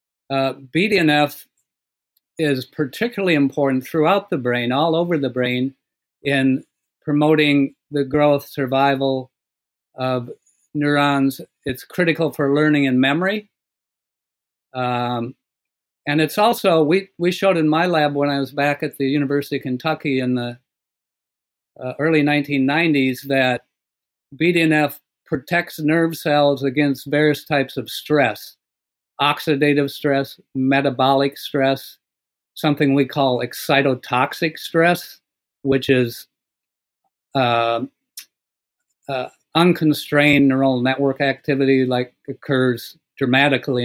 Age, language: 50-69, English